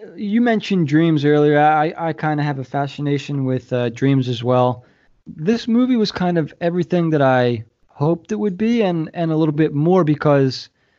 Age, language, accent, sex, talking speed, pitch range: 20-39, English, American, male, 190 wpm, 120-165 Hz